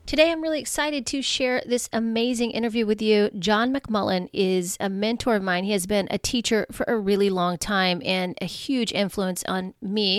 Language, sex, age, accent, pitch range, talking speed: English, female, 30-49, American, 185-225 Hz, 200 wpm